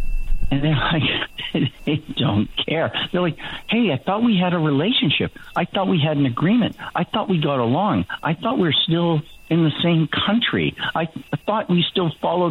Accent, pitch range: American, 110-165 Hz